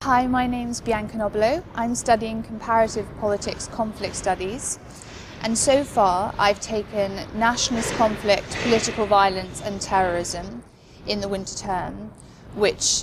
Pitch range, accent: 190-215 Hz, British